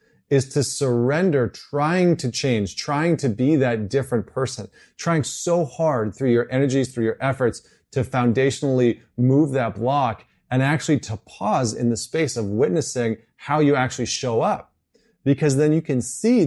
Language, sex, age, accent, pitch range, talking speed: English, male, 30-49, American, 120-155 Hz, 165 wpm